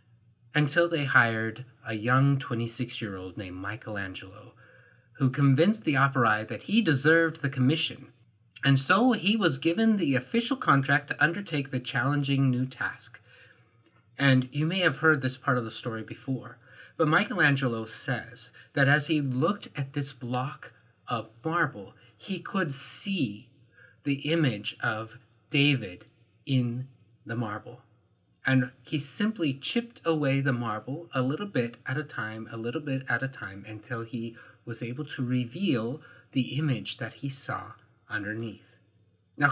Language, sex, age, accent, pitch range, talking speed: English, male, 30-49, American, 115-150 Hz, 145 wpm